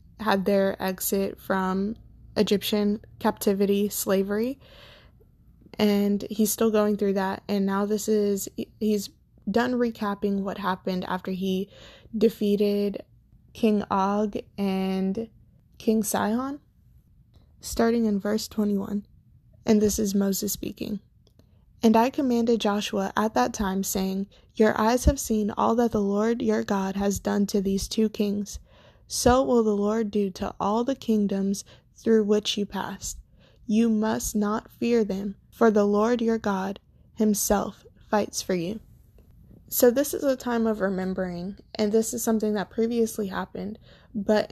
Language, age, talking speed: English, 20-39, 140 wpm